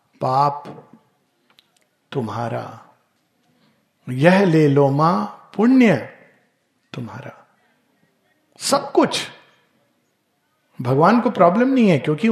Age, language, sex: 50-69, Hindi, male